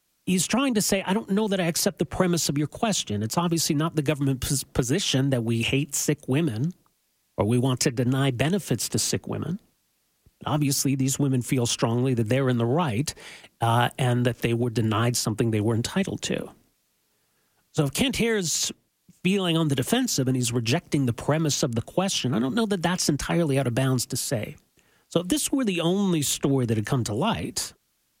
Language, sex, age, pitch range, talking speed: English, male, 40-59, 115-155 Hz, 205 wpm